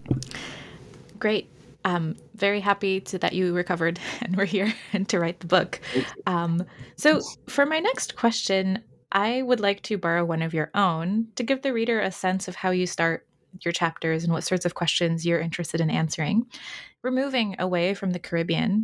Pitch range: 170-215 Hz